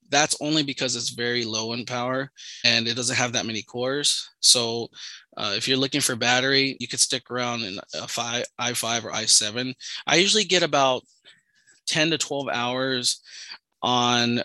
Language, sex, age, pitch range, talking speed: English, male, 20-39, 120-140 Hz, 170 wpm